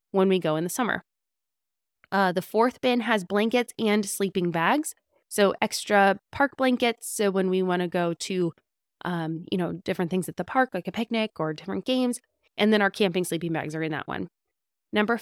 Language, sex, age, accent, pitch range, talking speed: English, female, 20-39, American, 180-240 Hz, 200 wpm